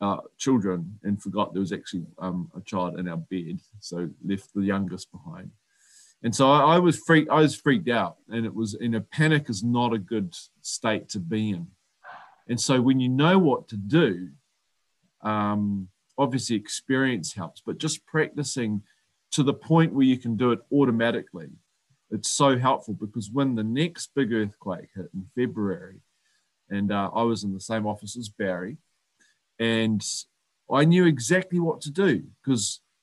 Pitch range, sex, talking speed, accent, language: 100-140 Hz, male, 175 wpm, Australian, English